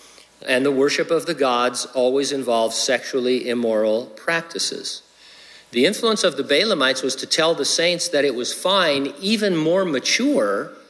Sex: male